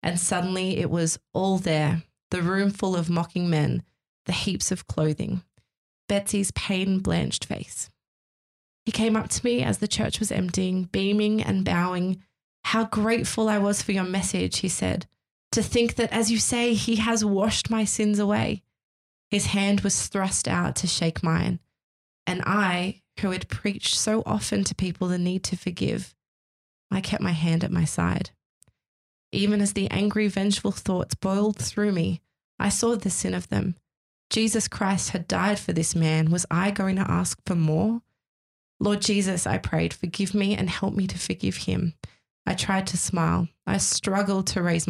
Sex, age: female, 20-39